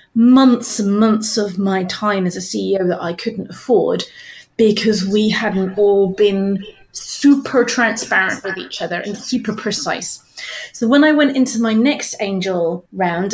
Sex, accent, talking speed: female, British, 160 wpm